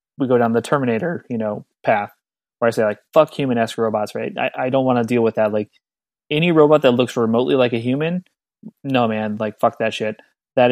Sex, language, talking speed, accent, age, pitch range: male, English, 225 wpm, American, 30-49, 115-145 Hz